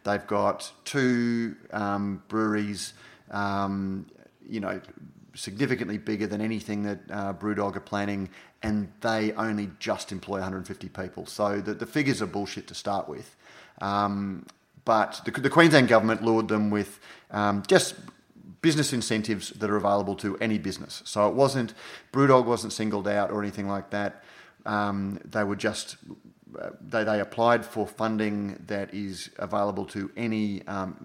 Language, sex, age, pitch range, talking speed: English, male, 30-49, 95-110 Hz, 155 wpm